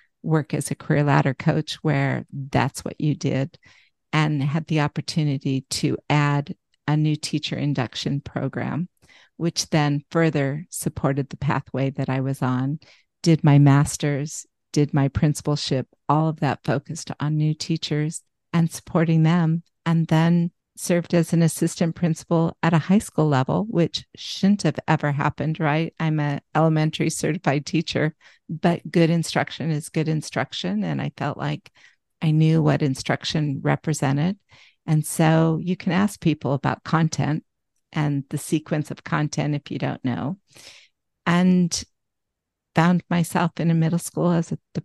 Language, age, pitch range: English, 50-69, 145-165 Hz